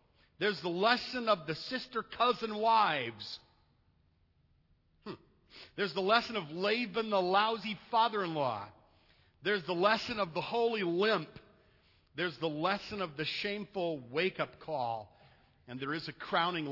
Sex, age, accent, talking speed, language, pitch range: male, 50-69, American, 135 wpm, English, 155-215 Hz